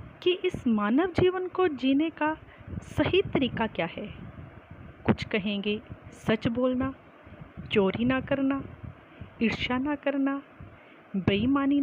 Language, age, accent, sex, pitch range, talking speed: Hindi, 40-59, native, female, 235-330 Hz, 110 wpm